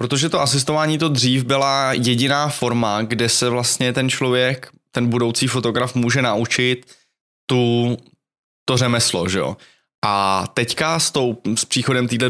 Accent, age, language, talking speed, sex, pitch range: native, 20-39, Czech, 145 wpm, male, 110-125 Hz